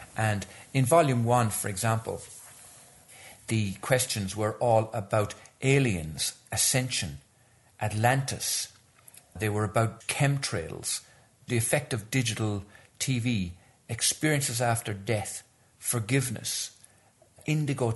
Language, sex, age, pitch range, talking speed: English, male, 50-69, 100-125 Hz, 95 wpm